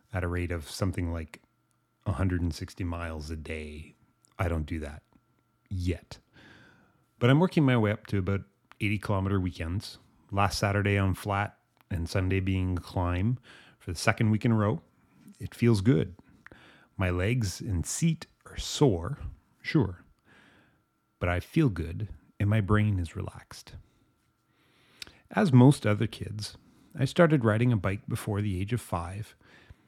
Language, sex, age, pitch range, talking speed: English, male, 30-49, 90-115 Hz, 150 wpm